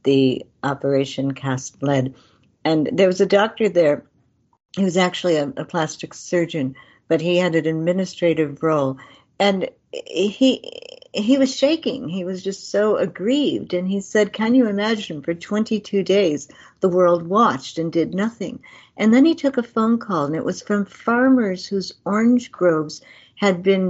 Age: 60-79